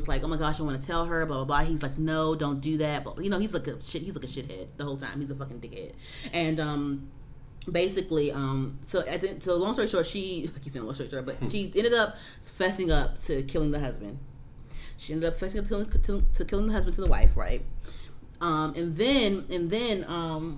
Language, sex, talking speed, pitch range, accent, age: English, female, 245 wpm, 145-175 Hz, American, 30-49